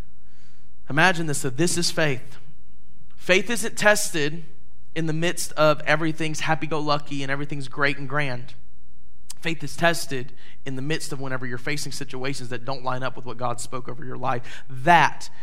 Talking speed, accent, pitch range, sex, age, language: 165 wpm, American, 125-160 Hz, male, 20-39, English